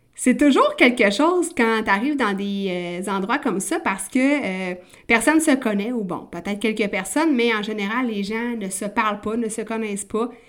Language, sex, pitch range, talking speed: French, female, 205-255 Hz, 210 wpm